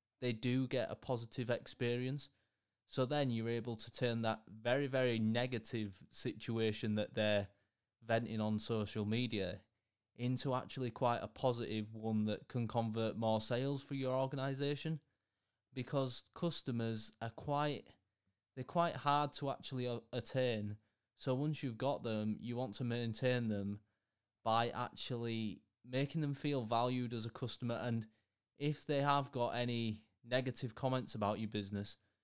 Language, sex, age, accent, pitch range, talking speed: English, male, 20-39, British, 110-130 Hz, 145 wpm